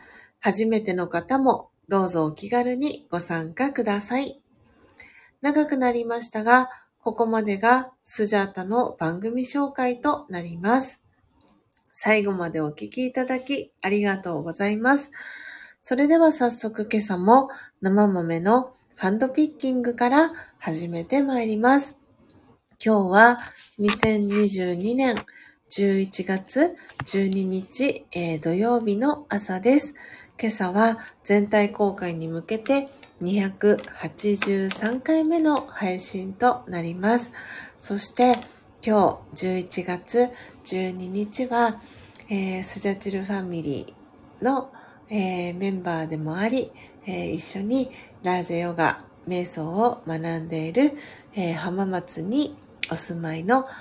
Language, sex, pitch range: Japanese, female, 185-255 Hz